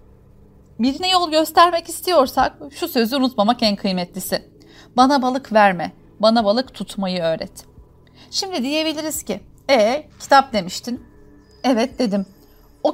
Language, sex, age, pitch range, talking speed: Turkish, female, 40-59, 195-260 Hz, 120 wpm